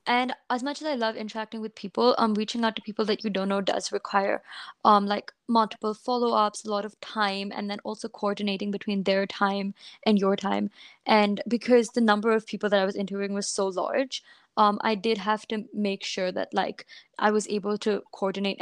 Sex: female